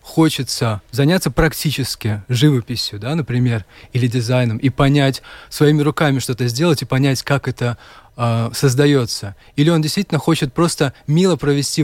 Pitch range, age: 120-150 Hz, 20-39